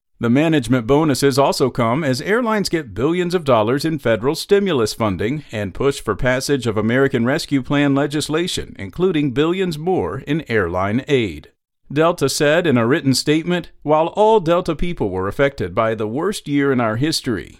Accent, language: American, English